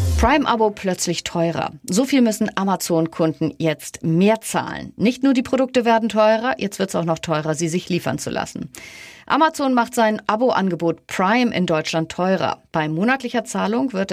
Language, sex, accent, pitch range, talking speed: German, female, German, 165-225 Hz, 165 wpm